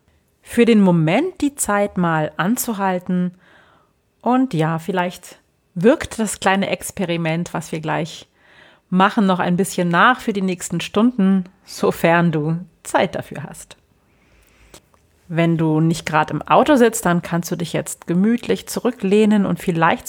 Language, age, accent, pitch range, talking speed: German, 40-59, German, 165-210 Hz, 140 wpm